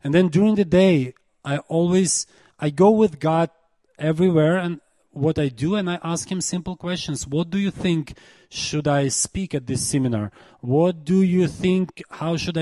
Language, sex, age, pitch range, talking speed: Czech, male, 30-49, 135-170 Hz, 180 wpm